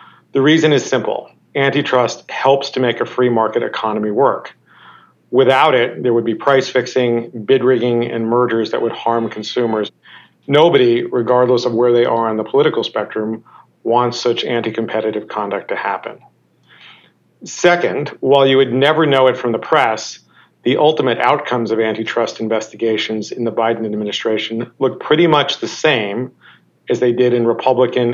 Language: English